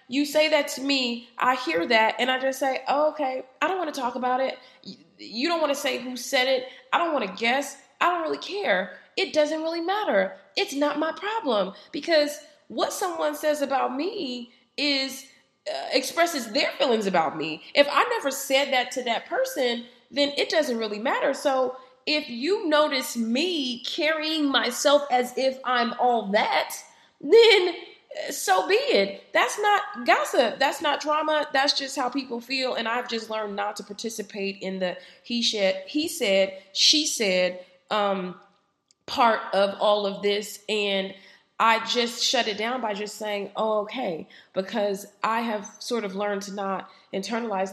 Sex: female